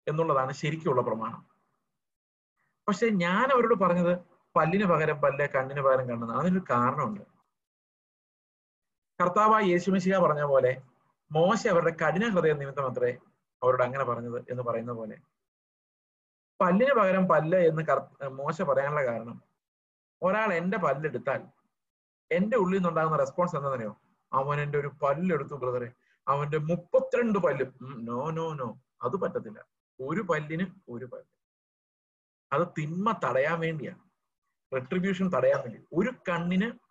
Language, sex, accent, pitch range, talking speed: Malayalam, male, native, 135-180 Hz, 115 wpm